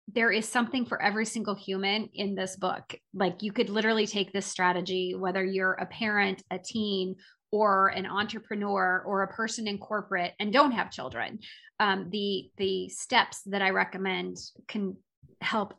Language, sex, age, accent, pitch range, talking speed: English, female, 30-49, American, 195-225 Hz, 165 wpm